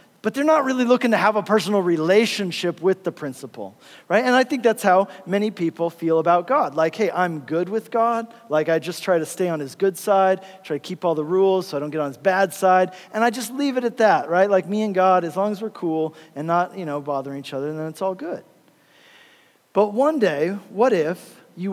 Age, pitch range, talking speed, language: 40-59, 180-230 Hz, 245 wpm, English